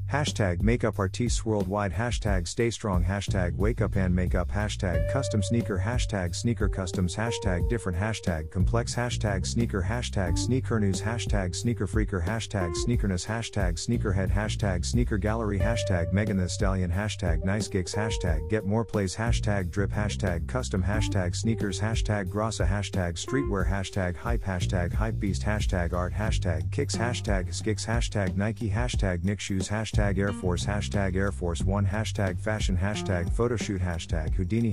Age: 40-59